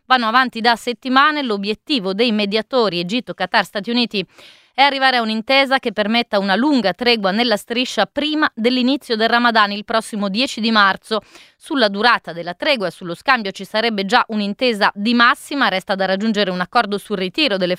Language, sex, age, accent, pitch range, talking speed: Italian, female, 20-39, native, 200-240 Hz, 175 wpm